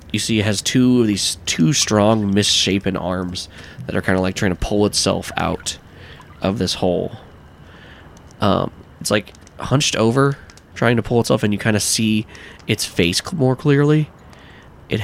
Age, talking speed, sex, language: 20-39, 170 wpm, male, English